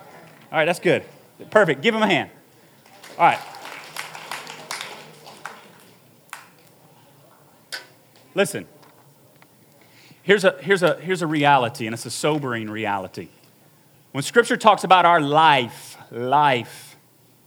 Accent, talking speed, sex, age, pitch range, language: American, 105 wpm, male, 30-49, 135-165 Hz, English